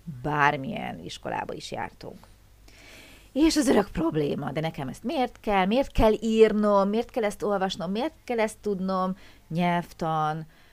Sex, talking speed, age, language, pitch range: female, 140 wpm, 30-49, Hungarian, 155-220 Hz